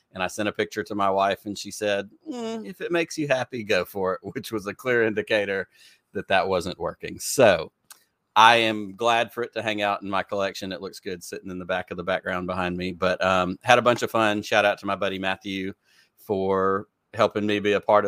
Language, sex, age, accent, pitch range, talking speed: English, male, 40-59, American, 95-115 Hz, 235 wpm